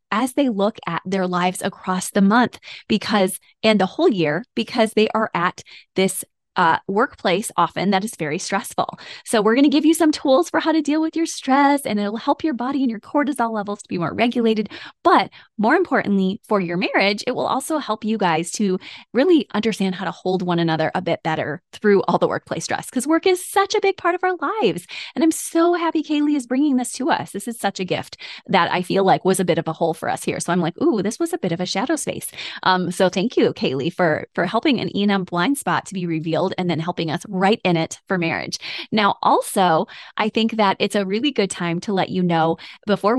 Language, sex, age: English, female, 20-39